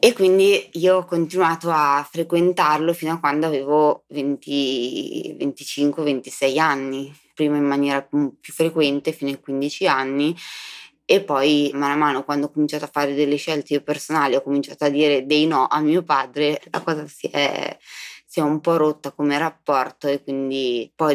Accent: native